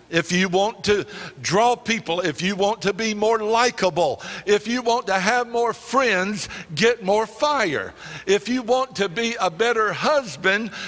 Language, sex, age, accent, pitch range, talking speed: English, male, 60-79, American, 190-245 Hz, 170 wpm